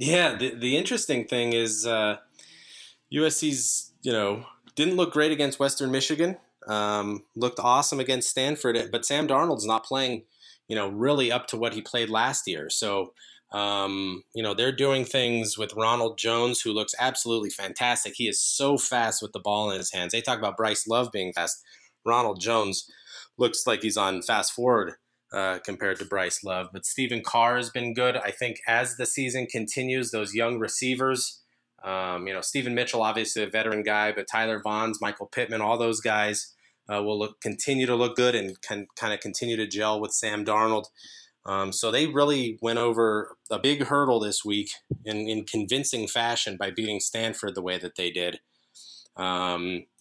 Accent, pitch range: American, 105-130 Hz